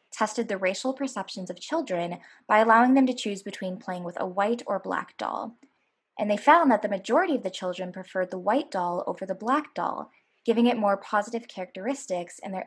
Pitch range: 185-245 Hz